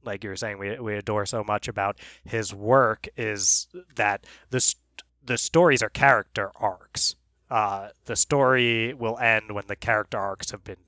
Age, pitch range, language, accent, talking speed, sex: 20-39, 100-120 Hz, English, American, 175 wpm, male